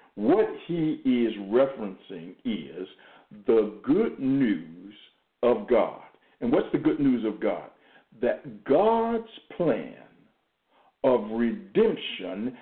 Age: 60-79